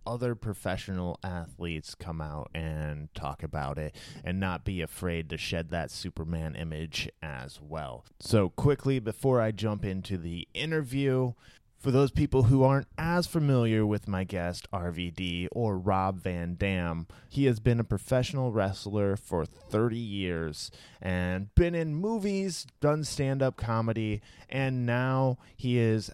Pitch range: 90-125 Hz